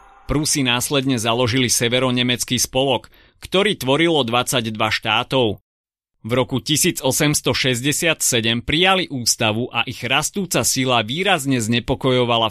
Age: 30-49